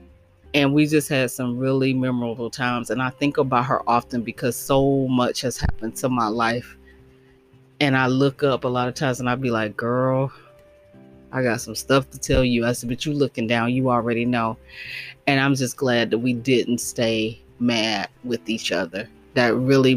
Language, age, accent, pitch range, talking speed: English, 30-49, American, 115-130 Hz, 195 wpm